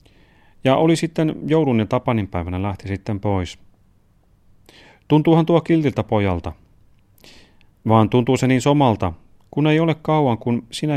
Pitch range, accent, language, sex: 95-125 Hz, native, Finnish, male